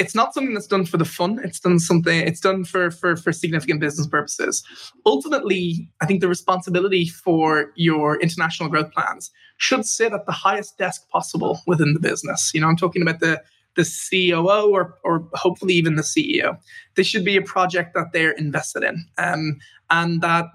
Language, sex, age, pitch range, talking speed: English, male, 20-39, 160-185 Hz, 190 wpm